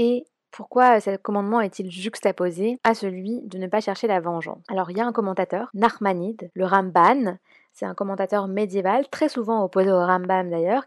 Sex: female